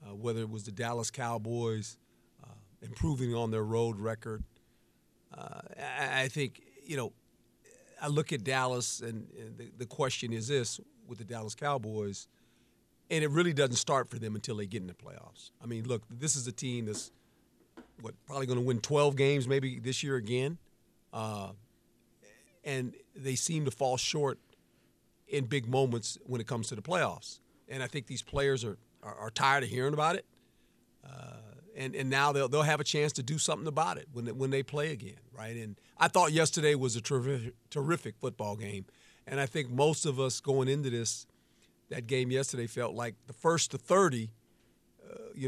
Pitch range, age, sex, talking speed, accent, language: 115-140 Hz, 50-69, male, 190 wpm, American, English